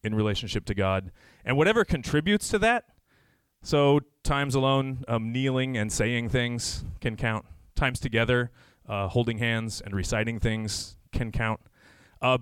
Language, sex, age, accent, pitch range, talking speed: English, male, 30-49, American, 110-140 Hz, 145 wpm